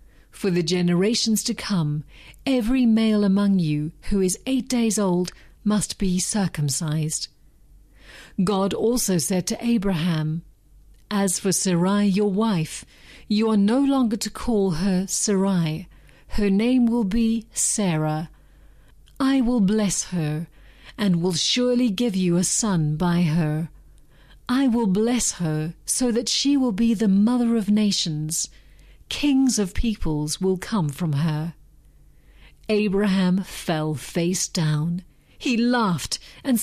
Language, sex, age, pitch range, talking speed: English, female, 40-59, 170-230 Hz, 130 wpm